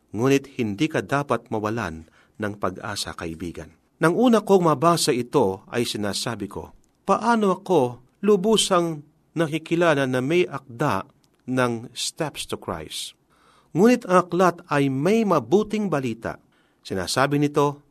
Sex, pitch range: male, 120-175 Hz